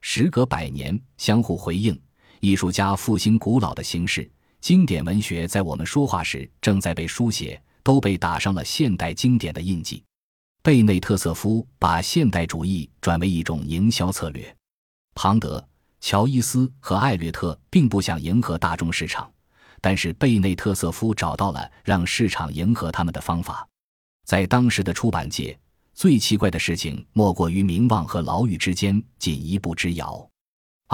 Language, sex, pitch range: Chinese, male, 85-110 Hz